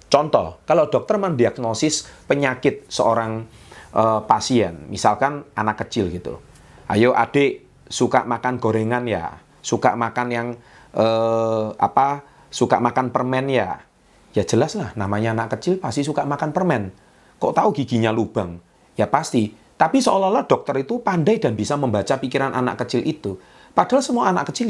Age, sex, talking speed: 30-49, male, 145 wpm